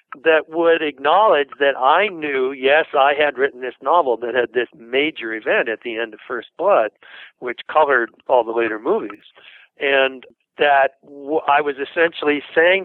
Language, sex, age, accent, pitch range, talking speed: English, male, 60-79, American, 120-160 Hz, 165 wpm